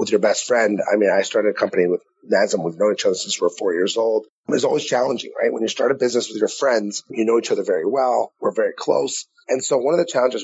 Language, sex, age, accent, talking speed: English, male, 30-49, American, 280 wpm